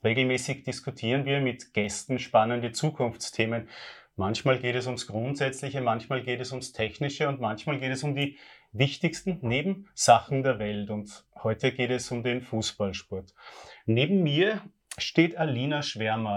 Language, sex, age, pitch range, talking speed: German, male, 30-49, 115-150 Hz, 145 wpm